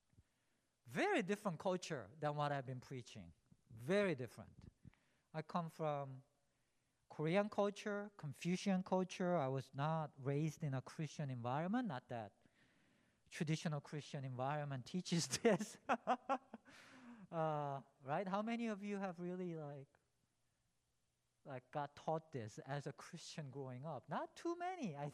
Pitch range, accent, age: 130-195 Hz, Japanese, 50-69